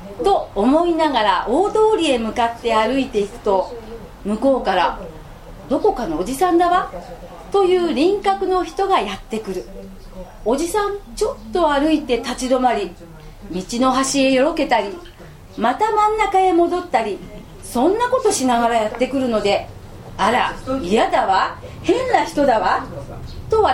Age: 40-59